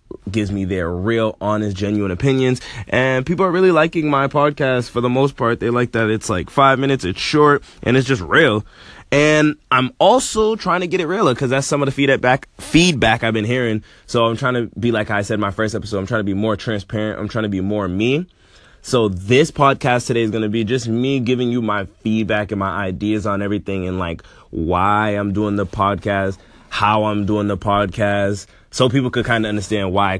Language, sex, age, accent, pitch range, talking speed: English, male, 20-39, American, 100-130 Hz, 220 wpm